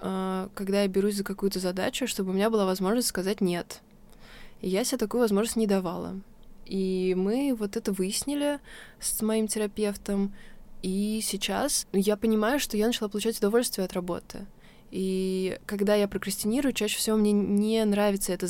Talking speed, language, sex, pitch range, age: 160 wpm, Russian, female, 190-225 Hz, 20-39